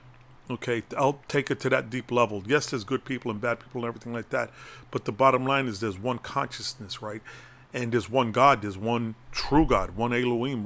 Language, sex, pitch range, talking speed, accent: English, male, 115-135 Hz, 215 wpm, American